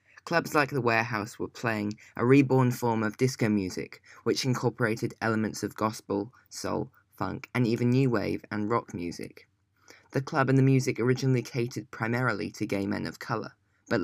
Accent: British